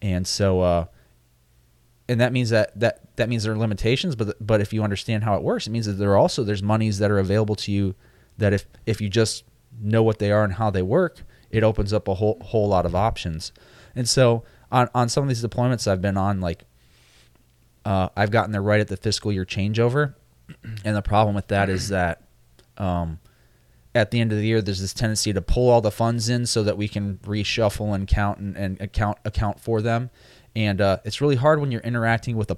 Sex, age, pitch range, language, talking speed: male, 20-39, 95-115 Hz, English, 230 wpm